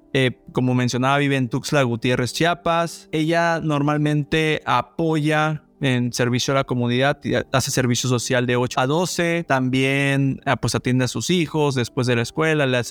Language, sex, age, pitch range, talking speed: Spanish, male, 20-39, 125-145 Hz, 165 wpm